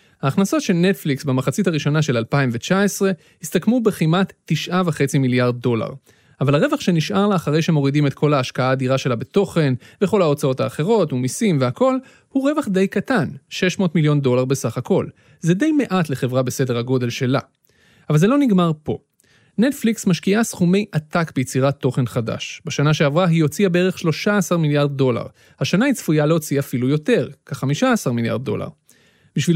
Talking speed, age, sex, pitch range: 150 wpm, 30-49, male, 135-185 Hz